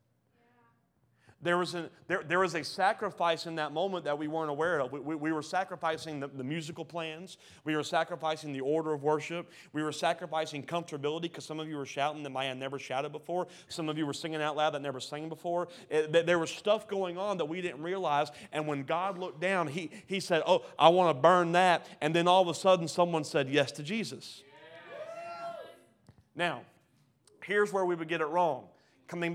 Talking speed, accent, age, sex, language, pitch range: 215 wpm, American, 30-49, male, English, 150-180 Hz